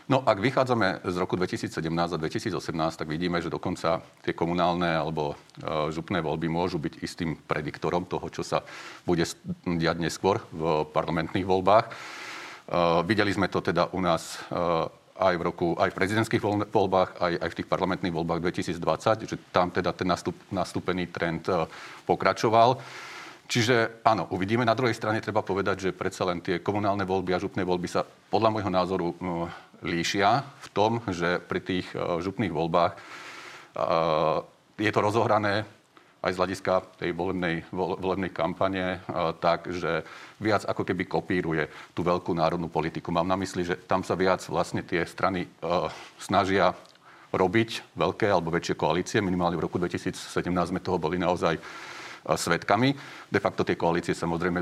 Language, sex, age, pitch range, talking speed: Slovak, male, 40-59, 85-105 Hz, 145 wpm